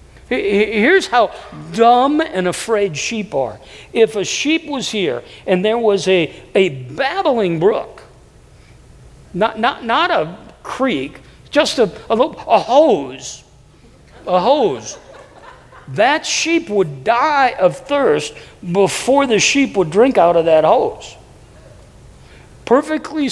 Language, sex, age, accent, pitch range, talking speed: English, male, 50-69, American, 185-265 Hz, 125 wpm